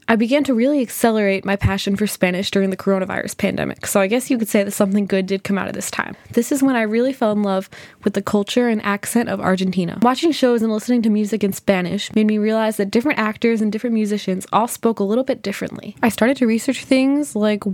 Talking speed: 245 wpm